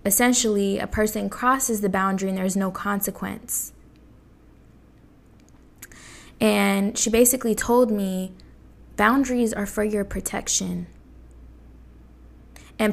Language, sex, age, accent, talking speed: English, female, 10-29, American, 95 wpm